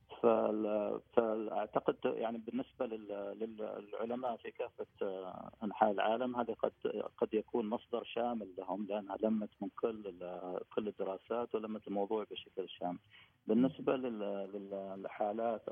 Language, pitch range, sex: Arabic, 95-115 Hz, male